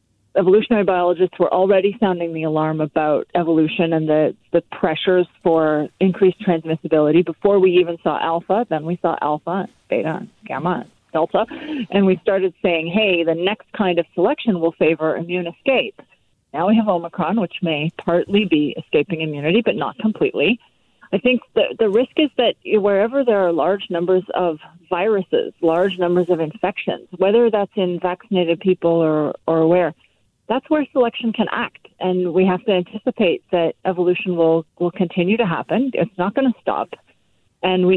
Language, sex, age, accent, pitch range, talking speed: English, female, 40-59, American, 165-200 Hz, 165 wpm